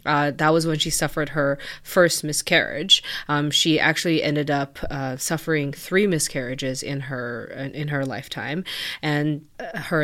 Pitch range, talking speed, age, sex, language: 140-175 Hz, 150 wpm, 20-39, female, English